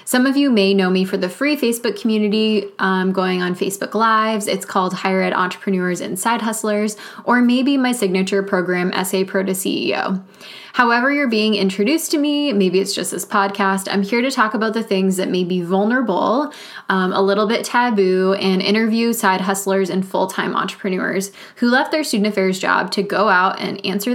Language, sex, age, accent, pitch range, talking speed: English, female, 20-39, American, 190-220 Hz, 195 wpm